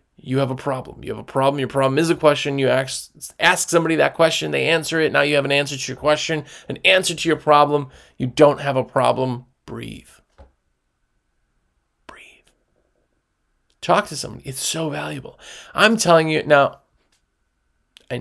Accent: American